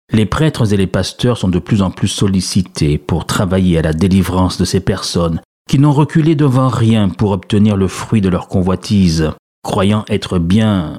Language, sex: French, male